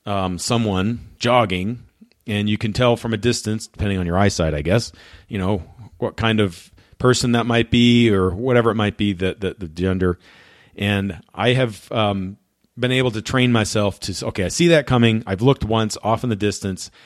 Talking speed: 195 wpm